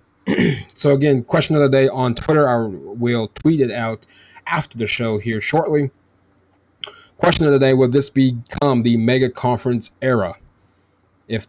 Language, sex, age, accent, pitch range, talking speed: English, male, 20-39, American, 100-130 Hz, 155 wpm